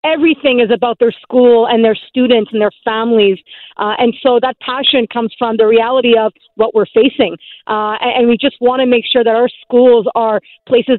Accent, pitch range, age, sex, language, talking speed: American, 230-270 Hz, 40-59, female, English, 200 wpm